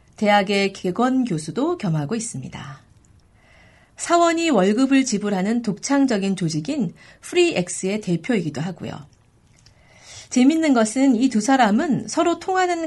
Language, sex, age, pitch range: Korean, female, 40-59, 170-255 Hz